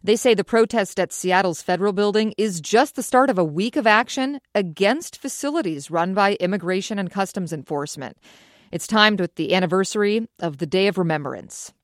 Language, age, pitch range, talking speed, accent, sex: English, 40-59, 170-225 Hz, 175 wpm, American, female